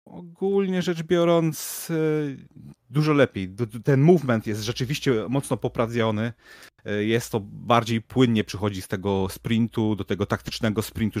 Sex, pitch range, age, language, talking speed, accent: male, 105-140 Hz, 30-49, Polish, 125 wpm, native